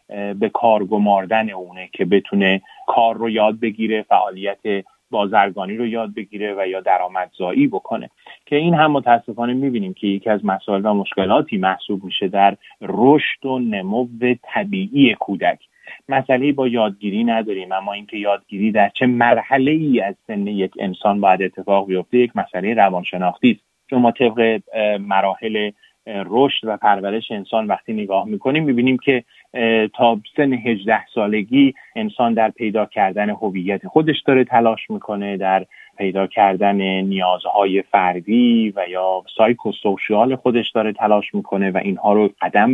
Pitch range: 100-120 Hz